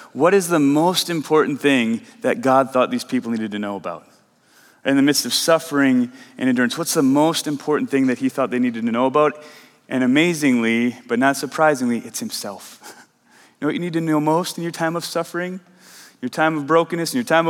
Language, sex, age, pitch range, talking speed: English, male, 30-49, 125-160 Hz, 210 wpm